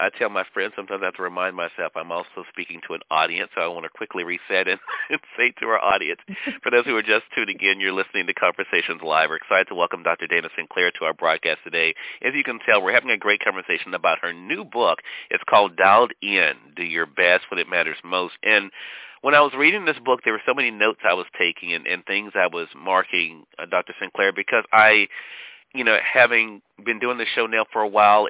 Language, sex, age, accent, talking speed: English, male, 40-59, American, 240 wpm